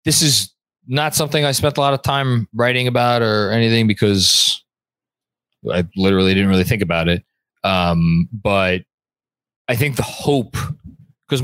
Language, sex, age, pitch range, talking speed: English, male, 20-39, 100-130 Hz, 150 wpm